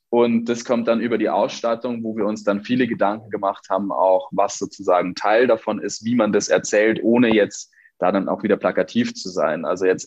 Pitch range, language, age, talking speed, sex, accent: 100-120 Hz, German, 20-39, 215 wpm, male, German